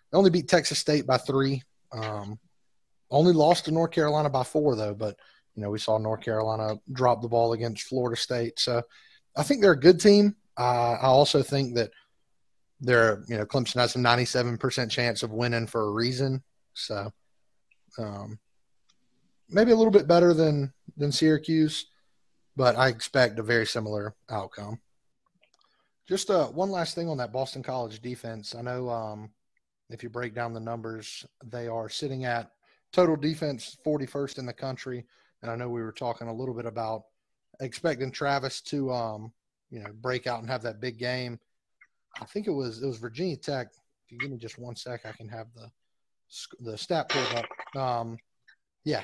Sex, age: male, 30-49